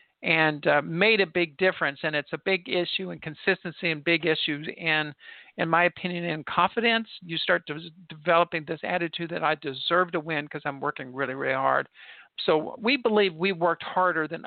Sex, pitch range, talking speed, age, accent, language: male, 155-190 Hz, 190 wpm, 50-69, American, English